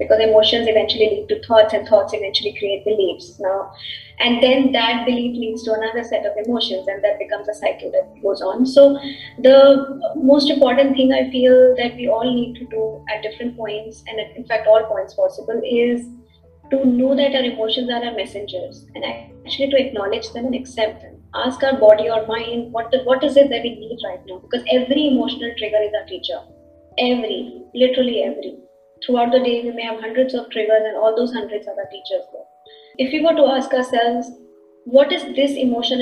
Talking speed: 200 wpm